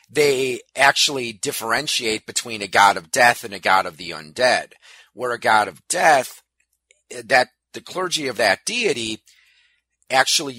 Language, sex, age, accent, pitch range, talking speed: English, male, 40-59, American, 100-140 Hz, 145 wpm